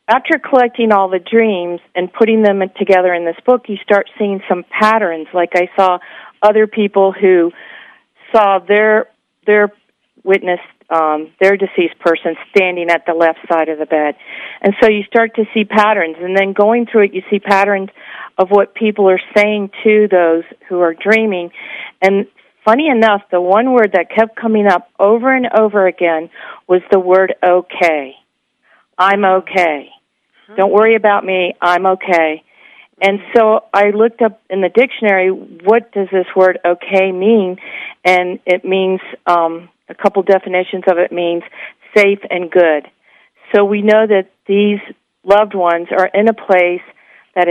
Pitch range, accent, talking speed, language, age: 180-210 Hz, American, 165 wpm, English, 50-69